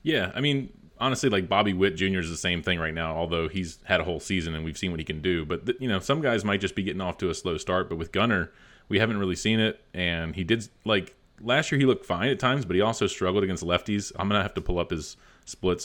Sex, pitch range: male, 85-95 Hz